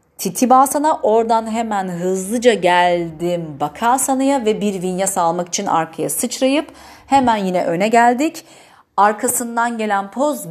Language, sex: Turkish, female